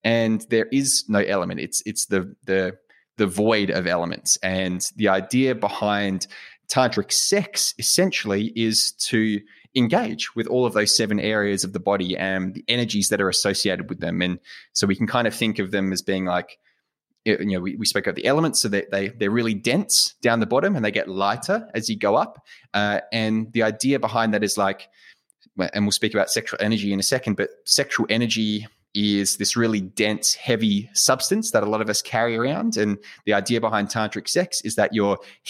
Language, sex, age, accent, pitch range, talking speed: English, male, 20-39, Australian, 100-120 Hz, 205 wpm